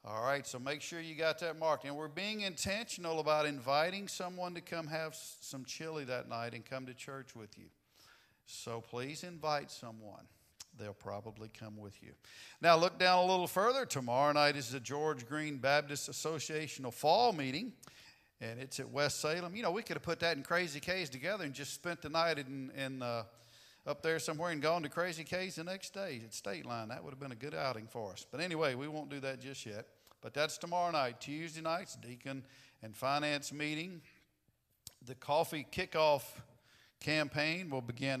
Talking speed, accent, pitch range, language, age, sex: 200 wpm, American, 125-165 Hz, English, 50-69, male